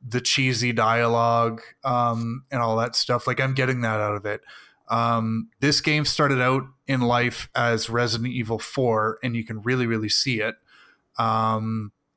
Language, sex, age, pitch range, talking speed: English, male, 30-49, 115-130 Hz, 170 wpm